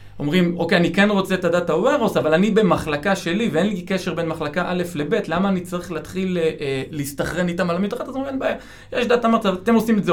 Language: Hebrew